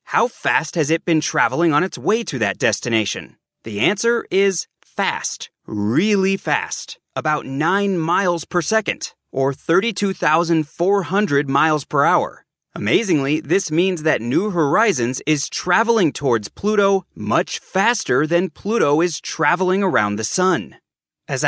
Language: English